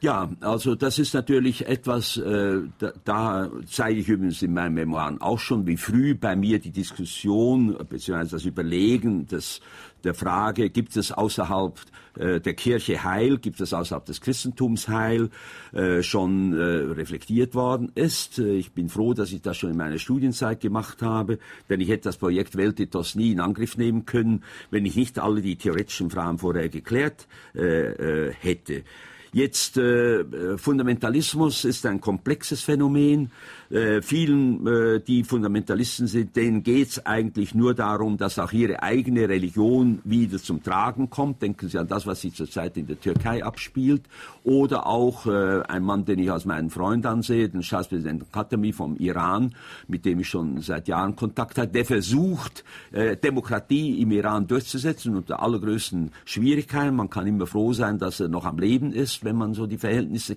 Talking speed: 170 wpm